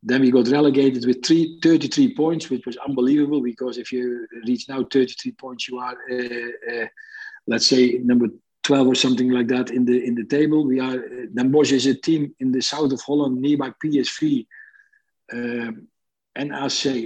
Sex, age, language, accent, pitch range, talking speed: male, 50-69, English, Dutch, 115-145 Hz, 190 wpm